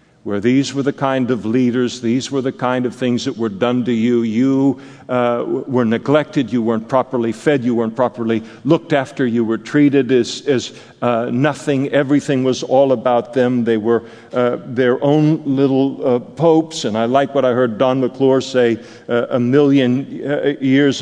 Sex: male